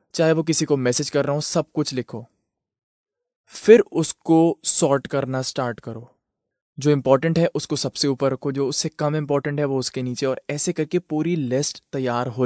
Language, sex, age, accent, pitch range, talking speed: Hindi, male, 20-39, native, 130-160 Hz, 190 wpm